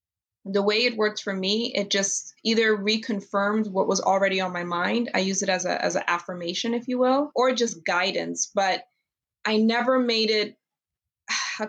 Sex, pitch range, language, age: female, 180-215 Hz, English, 20-39